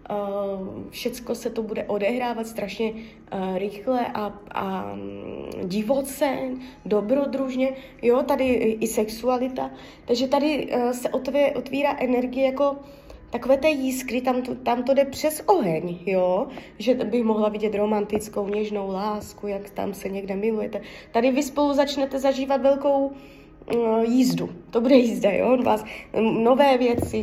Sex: female